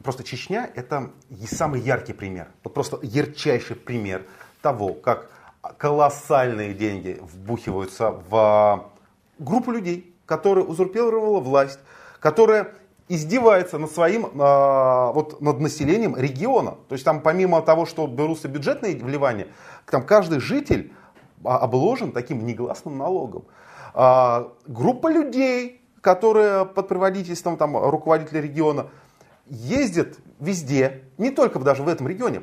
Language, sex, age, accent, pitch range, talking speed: Russian, male, 30-49, native, 125-180 Hz, 110 wpm